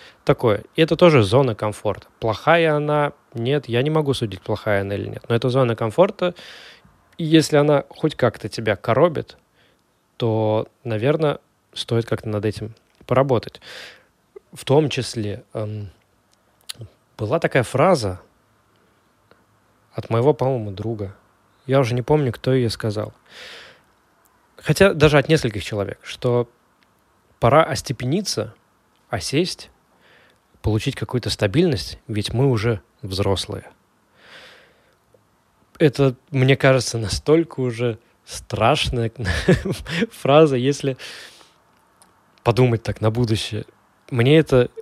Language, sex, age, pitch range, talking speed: Russian, male, 20-39, 105-145 Hz, 110 wpm